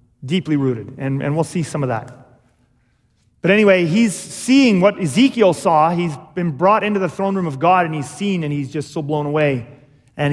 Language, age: English, 30-49